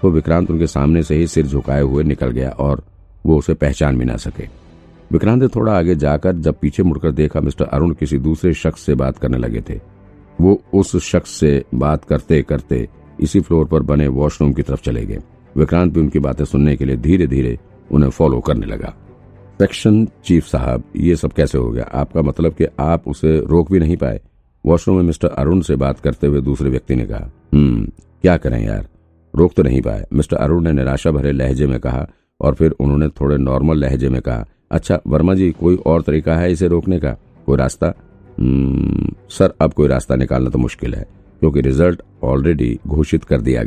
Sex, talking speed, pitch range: male, 200 wpm, 70-85 Hz